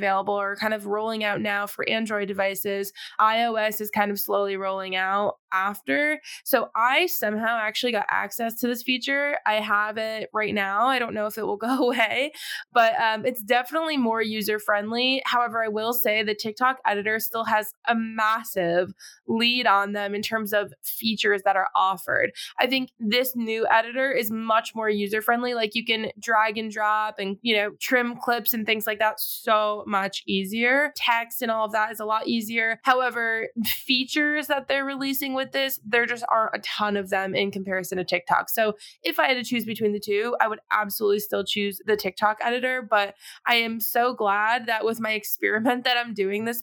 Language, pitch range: English, 210-240 Hz